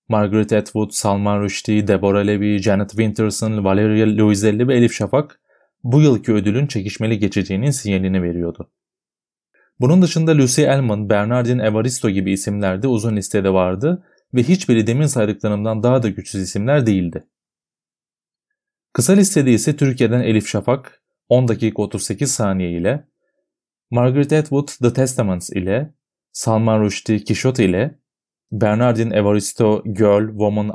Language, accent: Turkish, native